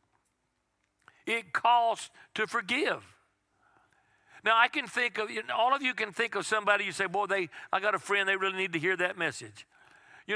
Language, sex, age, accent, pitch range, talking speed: English, male, 50-69, American, 180-215 Hz, 180 wpm